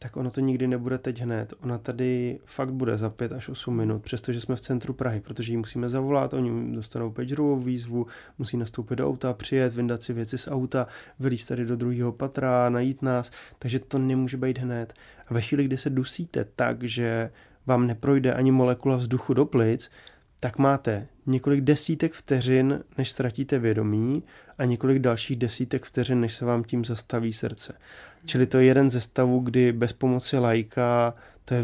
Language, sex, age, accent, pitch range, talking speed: Czech, male, 20-39, native, 115-130 Hz, 180 wpm